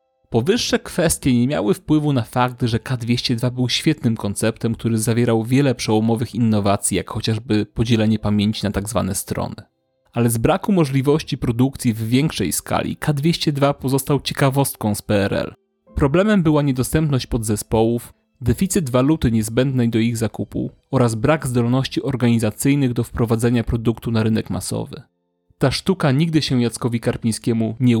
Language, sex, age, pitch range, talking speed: Polish, male, 30-49, 110-135 Hz, 140 wpm